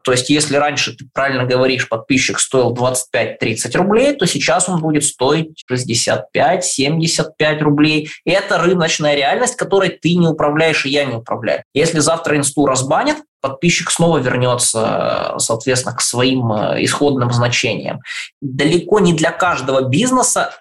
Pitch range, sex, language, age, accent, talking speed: 140-185 Hz, male, Russian, 20-39, native, 135 wpm